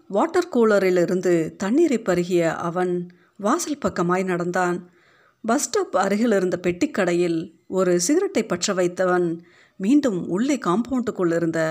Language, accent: Tamil, native